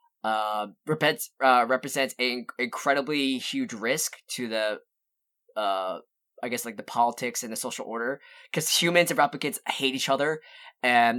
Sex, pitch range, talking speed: male, 120-155 Hz, 145 wpm